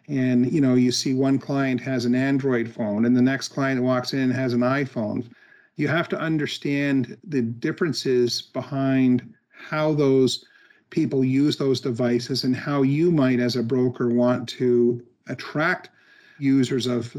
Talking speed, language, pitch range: 160 wpm, English, 125-145 Hz